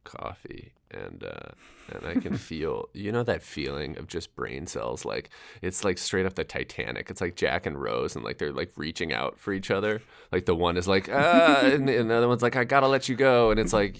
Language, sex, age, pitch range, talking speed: English, male, 20-39, 90-110 Hz, 235 wpm